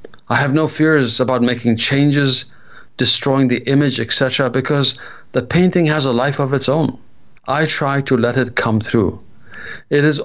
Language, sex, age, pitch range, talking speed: English, male, 50-69, 110-145 Hz, 170 wpm